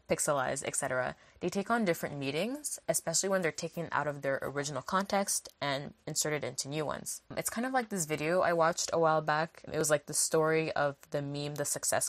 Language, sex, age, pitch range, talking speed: English, female, 10-29, 140-170 Hz, 210 wpm